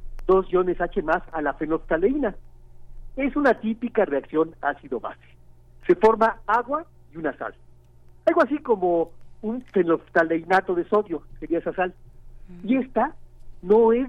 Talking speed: 135 wpm